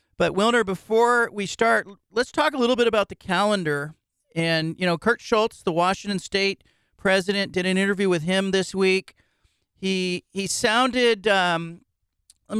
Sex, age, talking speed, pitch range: male, 40-59, 155 wpm, 150-200 Hz